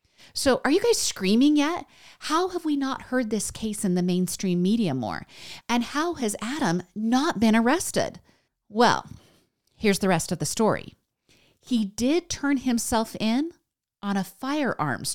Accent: American